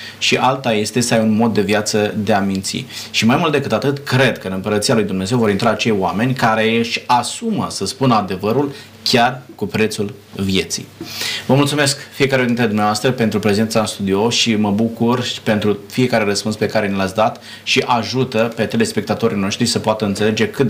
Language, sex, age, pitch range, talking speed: Romanian, male, 30-49, 100-120 Hz, 195 wpm